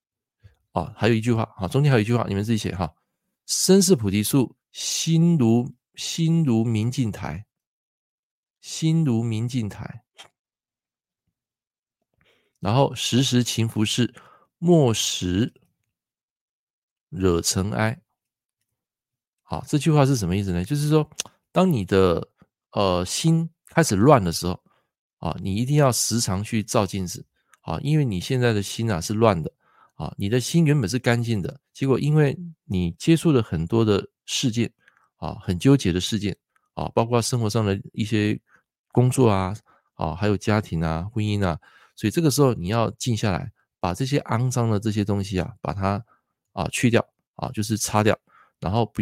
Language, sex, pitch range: Chinese, male, 95-130 Hz